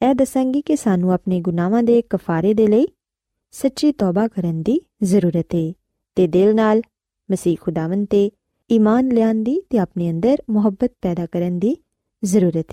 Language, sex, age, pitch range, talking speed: Urdu, female, 20-39, 180-260 Hz, 130 wpm